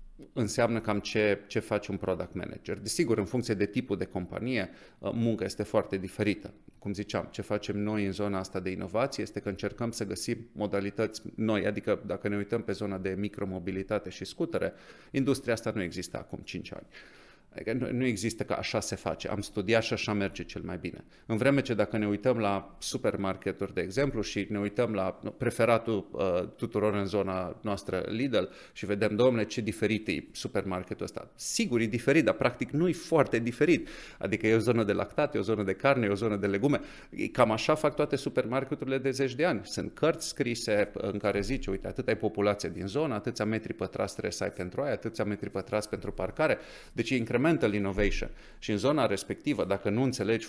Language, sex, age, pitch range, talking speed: Romanian, male, 30-49, 100-115 Hz, 195 wpm